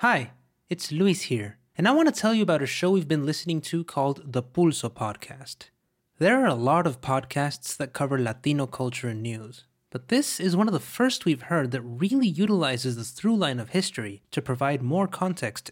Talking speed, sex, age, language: 200 wpm, male, 20-39, English